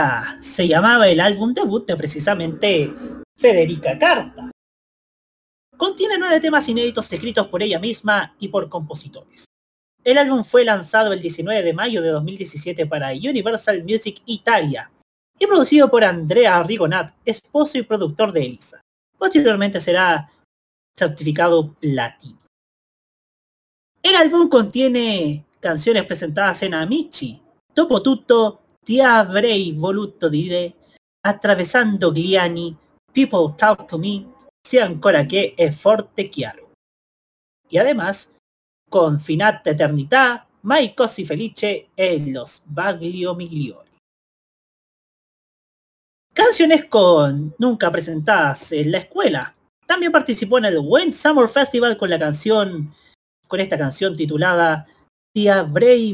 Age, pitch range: 30-49, 165-245 Hz